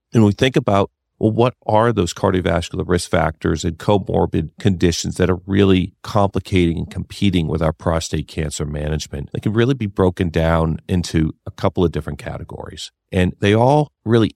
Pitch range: 80-100 Hz